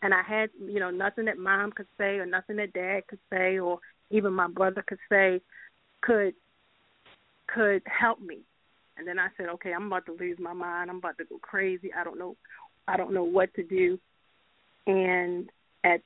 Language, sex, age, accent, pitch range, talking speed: English, female, 30-49, American, 180-200 Hz, 200 wpm